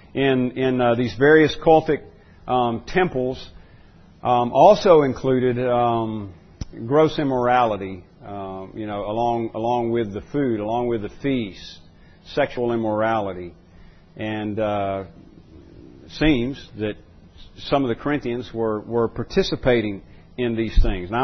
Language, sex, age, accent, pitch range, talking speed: English, male, 40-59, American, 105-135 Hz, 125 wpm